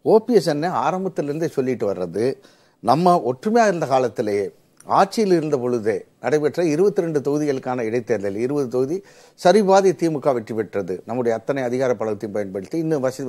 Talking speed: 130 wpm